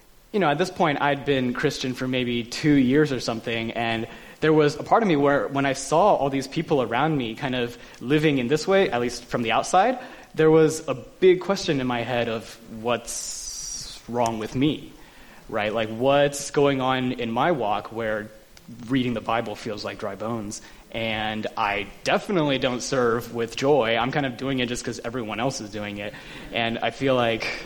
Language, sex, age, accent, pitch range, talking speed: English, male, 20-39, American, 120-155 Hz, 200 wpm